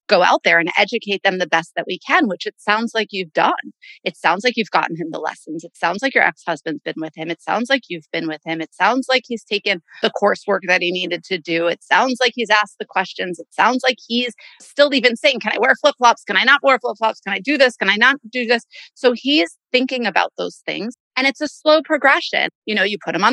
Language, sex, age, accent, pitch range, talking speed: English, female, 30-49, American, 190-245 Hz, 260 wpm